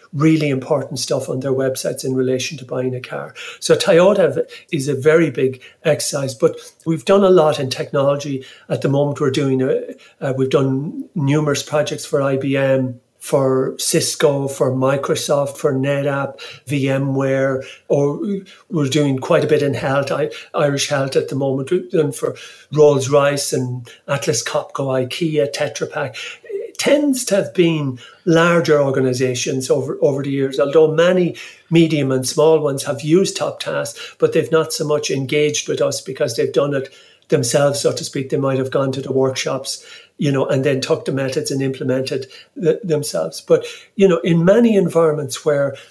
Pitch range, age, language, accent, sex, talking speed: 135-165 Hz, 60-79, English, British, male, 175 wpm